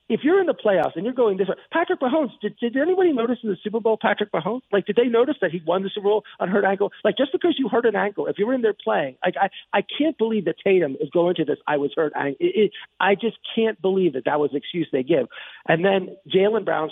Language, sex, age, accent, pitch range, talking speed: English, male, 40-59, American, 155-225 Hz, 280 wpm